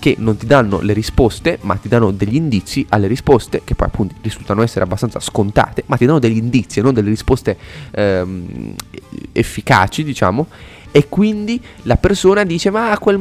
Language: Italian